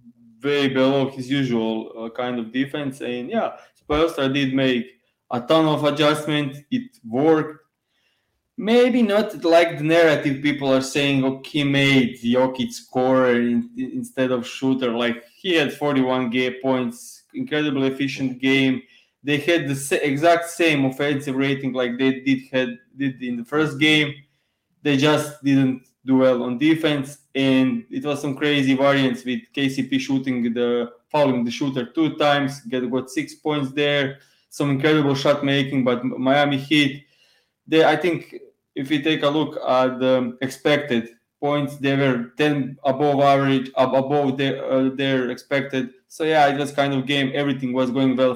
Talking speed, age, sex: 160 wpm, 20-39, male